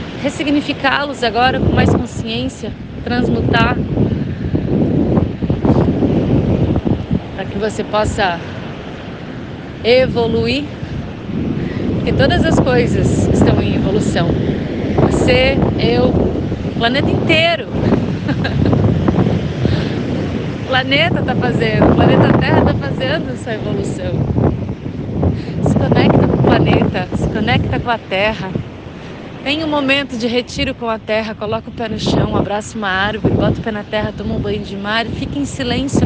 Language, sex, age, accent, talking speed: Portuguese, female, 30-49, Brazilian, 120 wpm